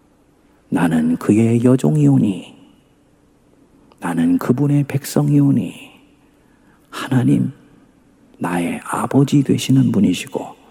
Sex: male